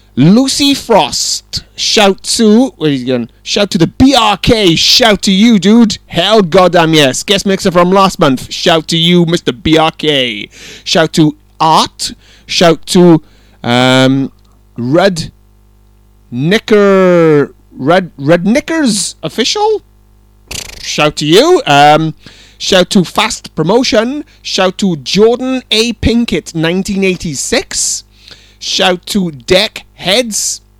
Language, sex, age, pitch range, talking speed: English, male, 30-49, 120-200 Hz, 115 wpm